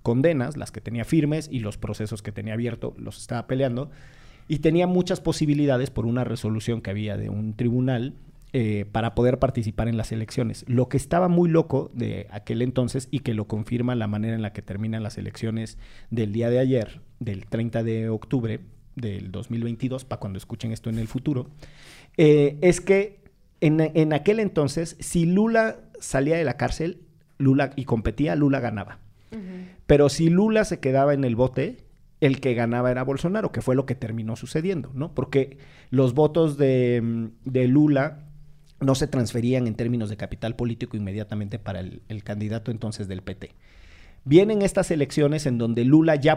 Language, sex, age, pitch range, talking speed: Spanish, male, 40-59, 115-150 Hz, 175 wpm